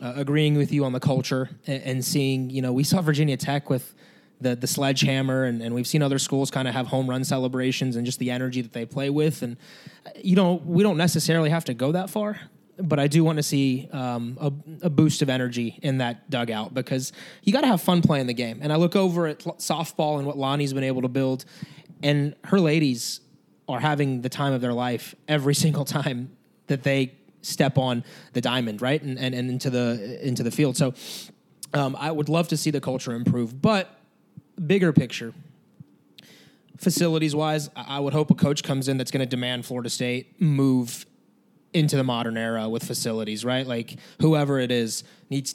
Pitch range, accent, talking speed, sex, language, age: 130-155 Hz, American, 205 wpm, male, English, 20-39